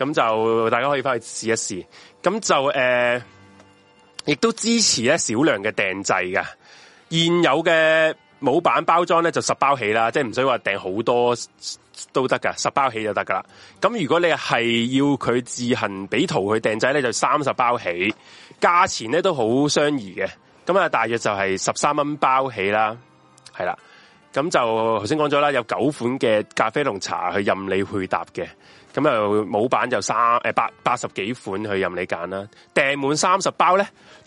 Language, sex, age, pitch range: Chinese, male, 20-39, 110-145 Hz